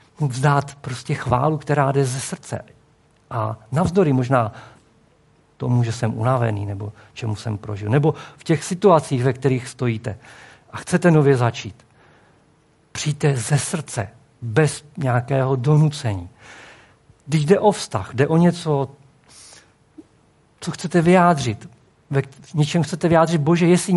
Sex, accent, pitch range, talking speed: male, native, 115-150 Hz, 130 wpm